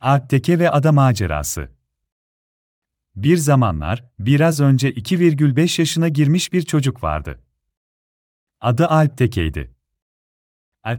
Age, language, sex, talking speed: 40-59, Turkish, male, 95 wpm